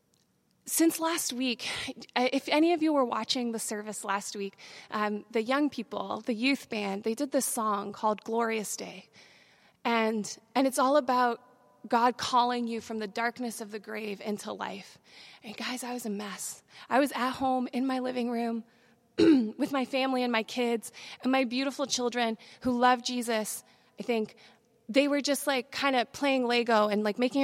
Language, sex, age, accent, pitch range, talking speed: English, female, 20-39, American, 225-270 Hz, 180 wpm